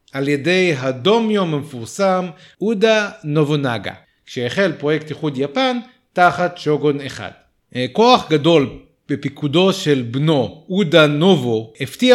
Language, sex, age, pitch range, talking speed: Hebrew, male, 40-59, 135-185 Hz, 105 wpm